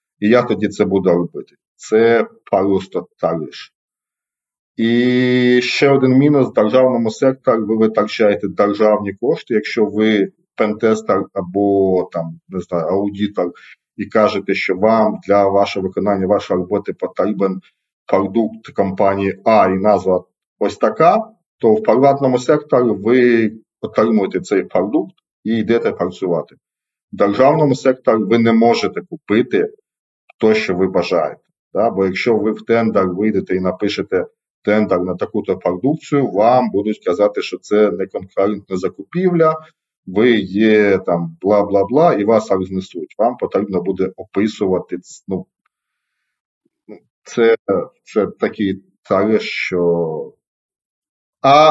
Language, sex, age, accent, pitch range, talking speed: Ukrainian, male, 40-59, native, 100-130 Hz, 120 wpm